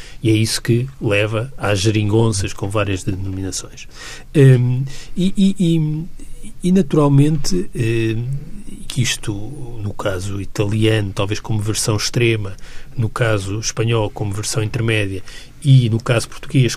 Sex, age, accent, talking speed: male, 40-59, Brazilian, 110 wpm